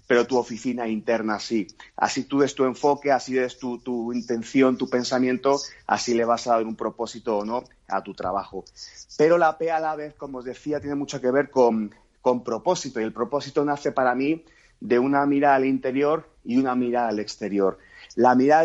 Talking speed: 205 wpm